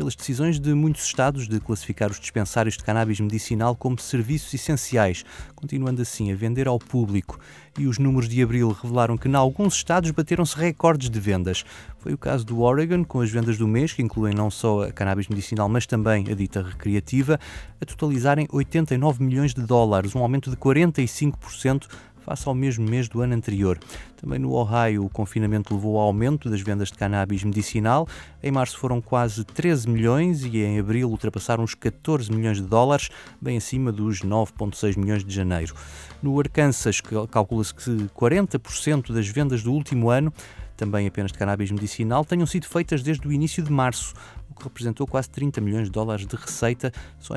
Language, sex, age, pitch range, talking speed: Portuguese, male, 20-39, 105-135 Hz, 180 wpm